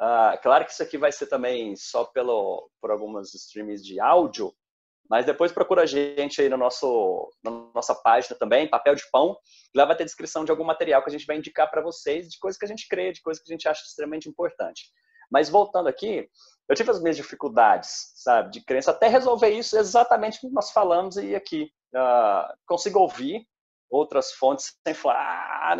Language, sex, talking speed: Portuguese, male, 200 wpm